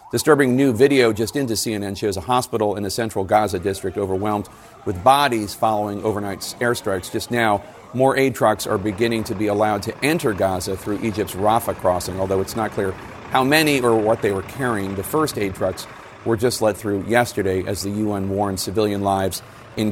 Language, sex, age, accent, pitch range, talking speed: English, male, 40-59, American, 100-125 Hz, 195 wpm